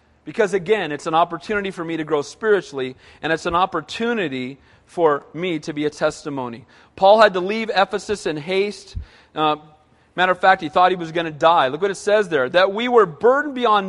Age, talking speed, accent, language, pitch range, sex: 40-59, 205 wpm, American, English, 195-300 Hz, male